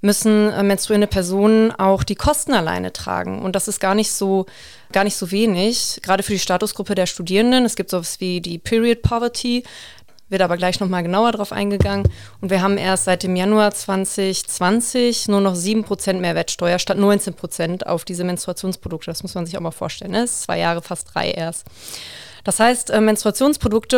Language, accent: German, German